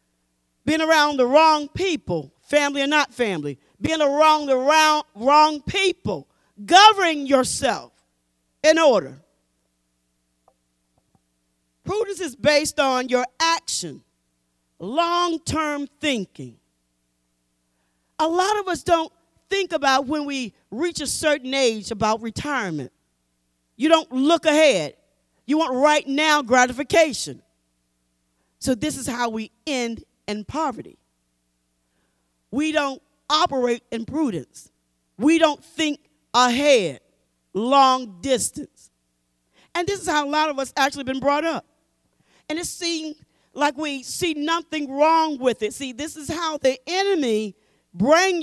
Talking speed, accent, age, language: 120 wpm, American, 40-59, English